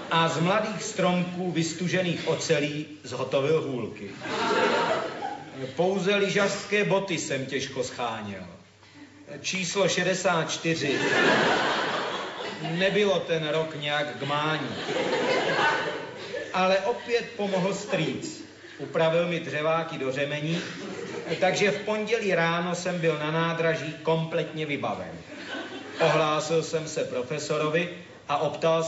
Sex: male